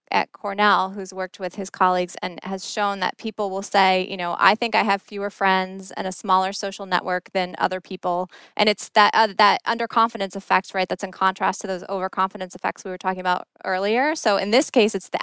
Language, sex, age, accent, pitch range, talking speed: English, female, 20-39, American, 185-220 Hz, 220 wpm